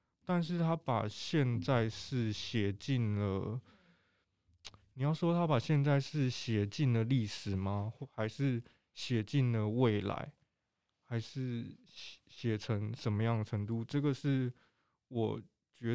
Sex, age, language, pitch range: male, 20-39, Chinese, 110-140 Hz